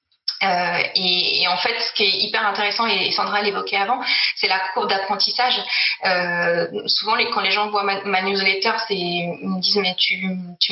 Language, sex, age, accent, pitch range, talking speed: French, female, 20-39, French, 185-230 Hz, 195 wpm